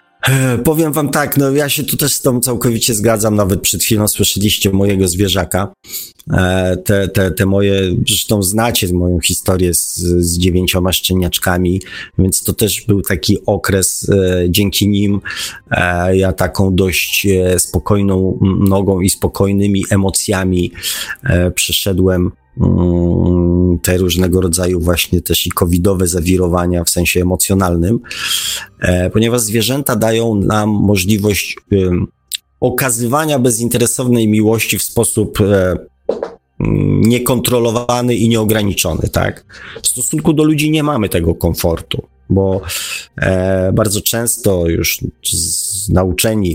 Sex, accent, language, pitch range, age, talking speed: male, native, Polish, 90-110 Hz, 30-49, 115 wpm